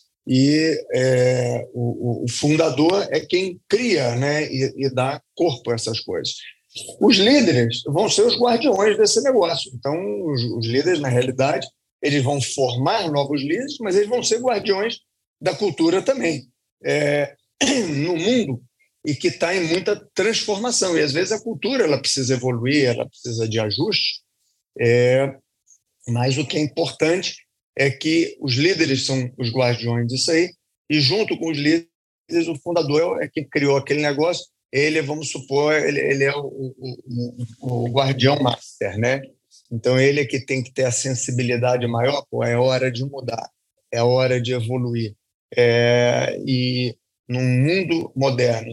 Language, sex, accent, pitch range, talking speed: Portuguese, male, Brazilian, 120-155 Hz, 155 wpm